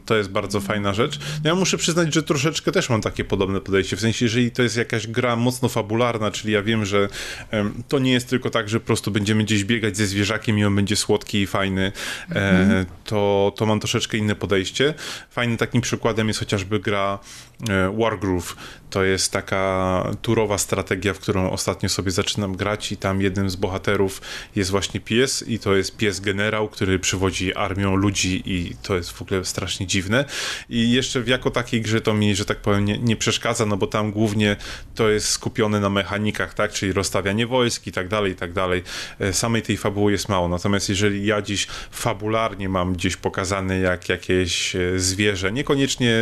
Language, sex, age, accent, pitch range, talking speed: Polish, male, 20-39, native, 95-115 Hz, 190 wpm